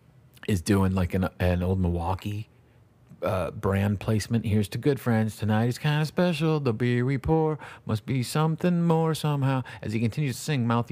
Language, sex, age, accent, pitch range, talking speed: English, male, 40-59, American, 95-125 Hz, 185 wpm